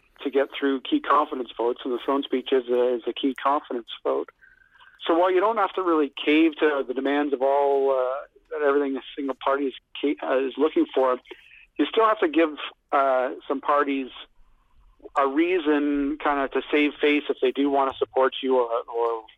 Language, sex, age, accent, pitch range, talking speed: English, male, 50-69, American, 125-150 Hz, 200 wpm